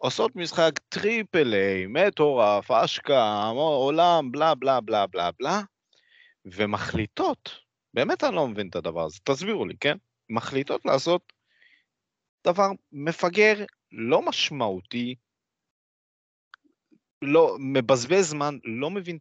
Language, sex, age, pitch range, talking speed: Hebrew, male, 30-49, 100-160 Hz, 100 wpm